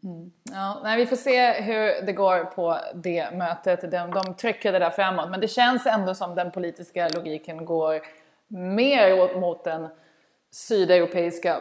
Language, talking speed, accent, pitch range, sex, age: Swedish, 160 wpm, native, 170-215 Hz, female, 20-39